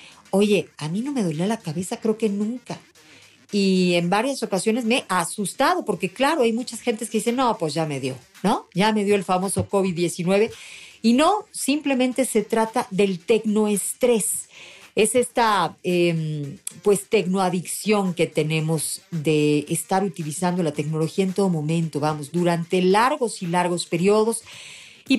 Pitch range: 175-225 Hz